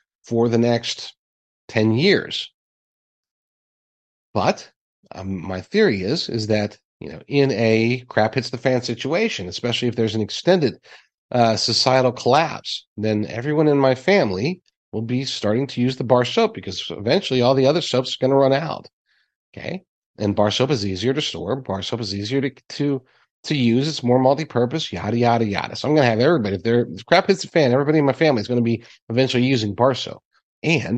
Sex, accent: male, American